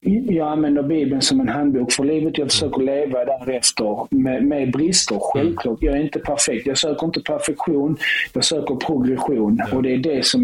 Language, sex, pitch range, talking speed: Swedish, male, 135-160 Hz, 185 wpm